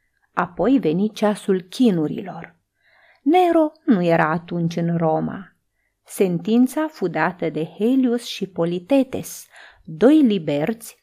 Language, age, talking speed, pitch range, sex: Romanian, 30-49, 105 wpm, 170-240 Hz, female